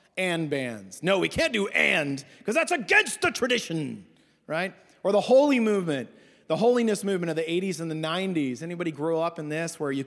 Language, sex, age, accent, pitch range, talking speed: English, male, 30-49, American, 155-245 Hz, 195 wpm